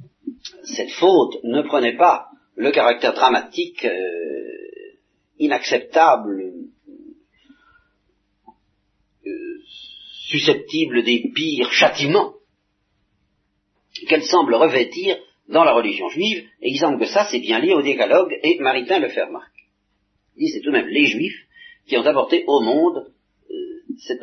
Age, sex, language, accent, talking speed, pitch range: 40-59, male, French, French, 125 wpm, 285-375 Hz